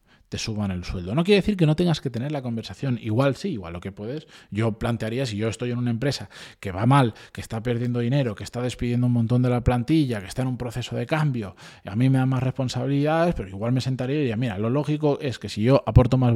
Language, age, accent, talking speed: Spanish, 20-39, Spanish, 260 wpm